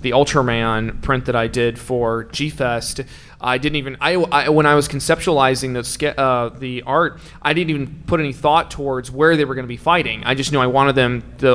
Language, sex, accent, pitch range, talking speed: English, male, American, 125-160 Hz, 225 wpm